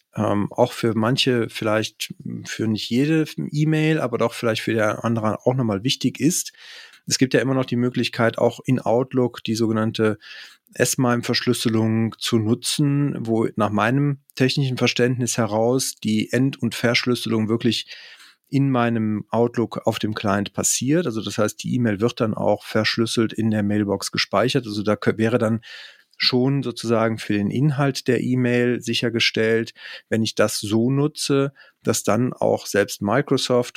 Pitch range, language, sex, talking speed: 105-125 Hz, German, male, 155 wpm